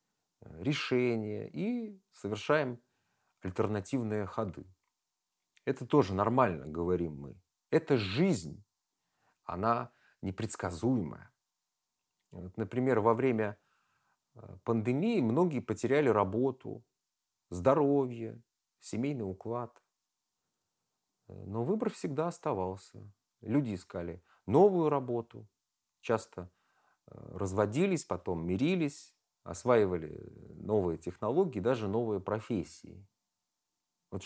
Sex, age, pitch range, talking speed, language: male, 40-59, 100-130 Hz, 75 wpm, Russian